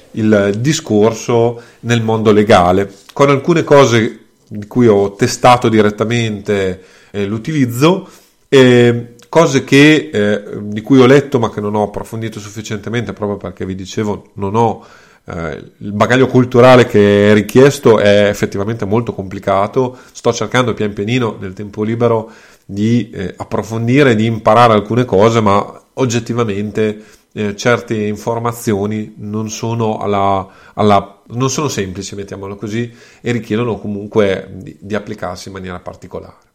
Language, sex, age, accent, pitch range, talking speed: Italian, male, 30-49, native, 105-120 Hz, 130 wpm